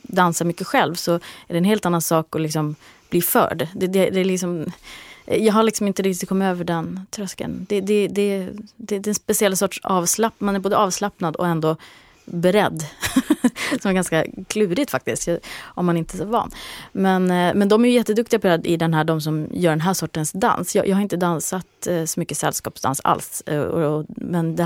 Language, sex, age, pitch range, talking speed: English, female, 30-49, 155-195 Hz, 215 wpm